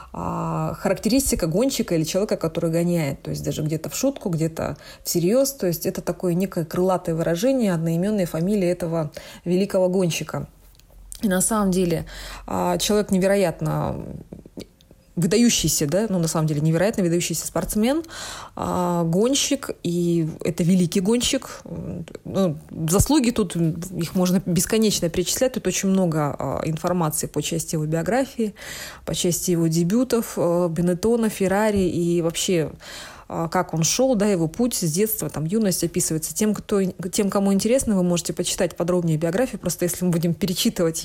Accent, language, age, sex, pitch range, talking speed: native, Russian, 20-39, female, 170-210 Hz, 140 wpm